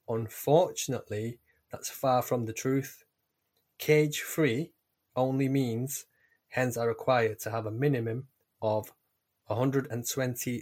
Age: 20-39